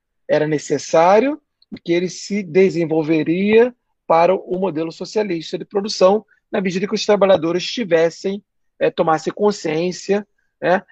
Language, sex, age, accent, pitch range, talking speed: Portuguese, male, 40-59, Brazilian, 160-205 Hz, 120 wpm